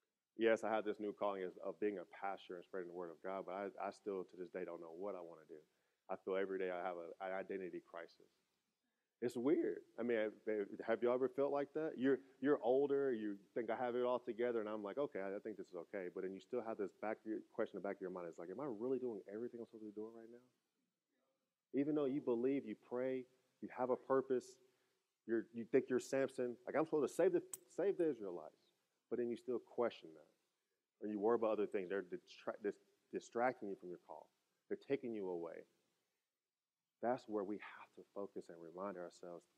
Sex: male